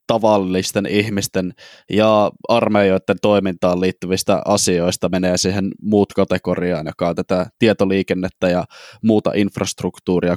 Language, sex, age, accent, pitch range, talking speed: Finnish, male, 20-39, native, 95-120 Hz, 105 wpm